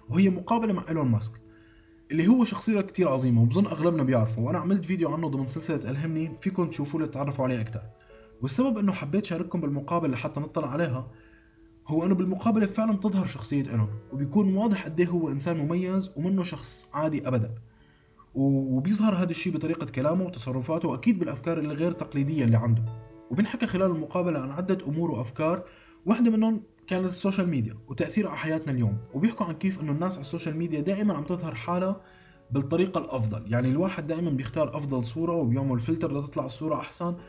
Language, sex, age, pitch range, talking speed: Arabic, male, 20-39, 130-180 Hz, 165 wpm